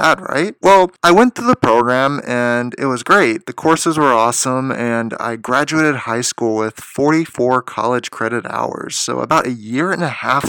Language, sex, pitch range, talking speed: English, male, 115-150 Hz, 185 wpm